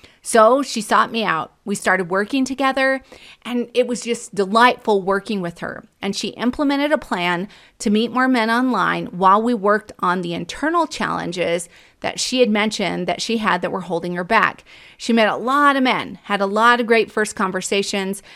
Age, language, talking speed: 30-49, English, 195 wpm